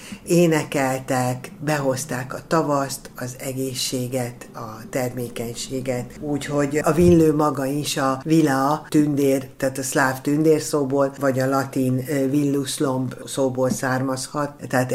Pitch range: 130-155 Hz